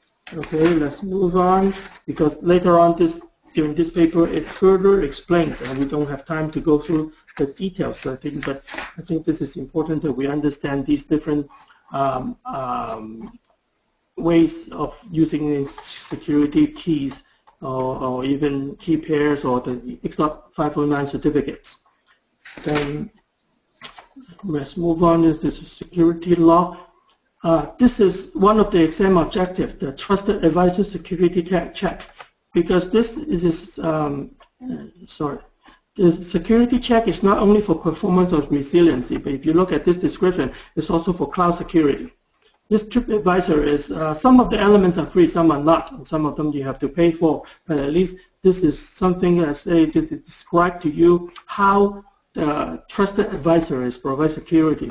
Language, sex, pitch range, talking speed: English, male, 150-185 Hz, 160 wpm